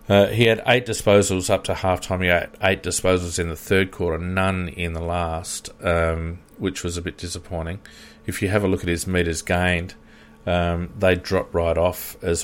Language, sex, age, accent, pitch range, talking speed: English, male, 40-59, Australian, 85-95 Hz, 200 wpm